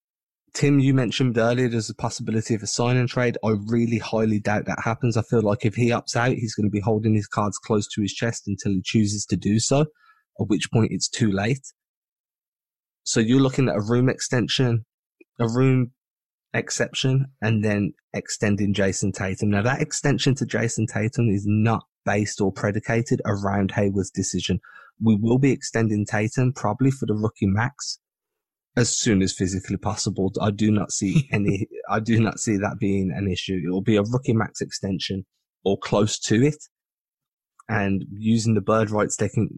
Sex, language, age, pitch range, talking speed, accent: male, English, 20-39, 100-120 Hz, 185 wpm, British